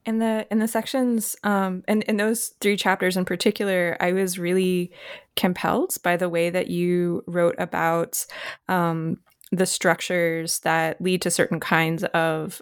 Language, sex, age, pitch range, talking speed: English, female, 20-39, 175-205 Hz, 160 wpm